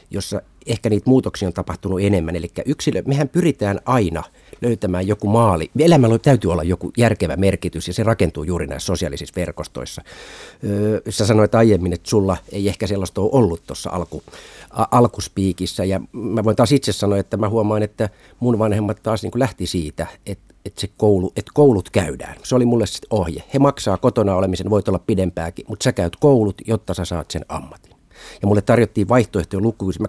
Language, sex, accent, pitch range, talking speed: Finnish, male, native, 90-115 Hz, 185 wpm